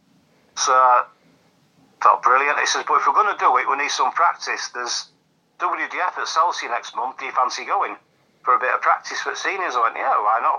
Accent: British